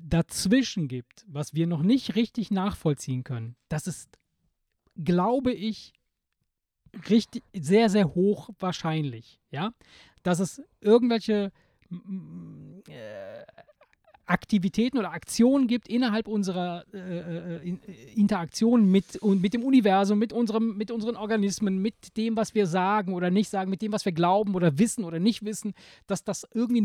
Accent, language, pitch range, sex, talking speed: German, German, 155-215 Hz, male, 130 wpm